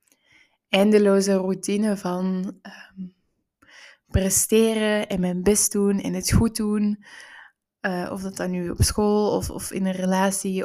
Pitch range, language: 185-205 Hz, Dutch